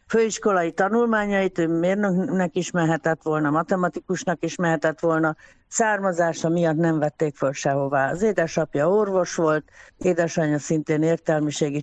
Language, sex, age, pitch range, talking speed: Hungarian, female, 60-79, 155-185 Hz, 115 wpm